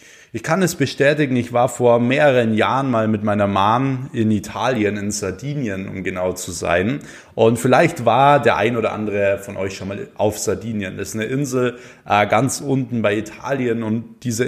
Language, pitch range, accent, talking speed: German, 105-125 Hz, German, 185 wpm